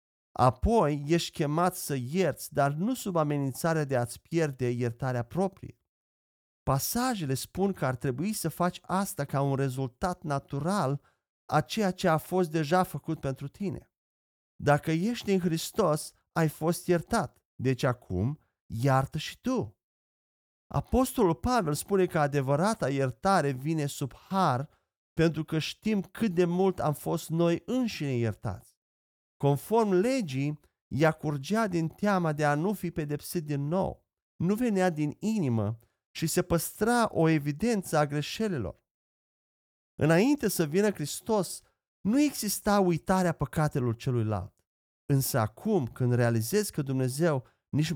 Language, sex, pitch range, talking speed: Romanian, male, 130-185 Hz, 135 wpm